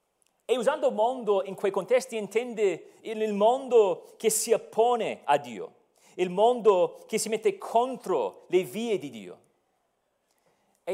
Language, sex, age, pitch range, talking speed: Italian, male, 40-59, 195-270 Hz, 135 wpm